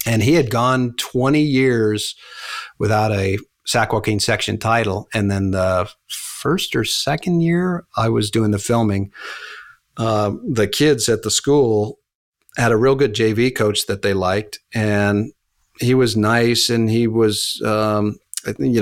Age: 50-69